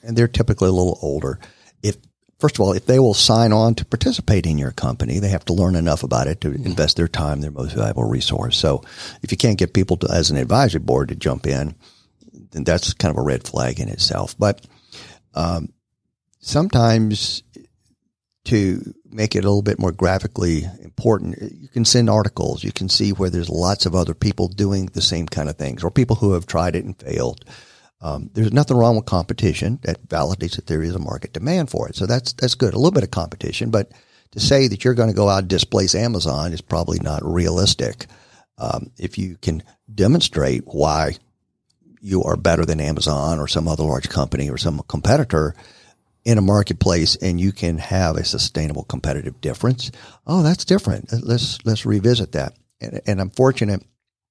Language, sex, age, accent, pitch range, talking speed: English, male, 50-69, American, 85-115 Hz, 200 wpm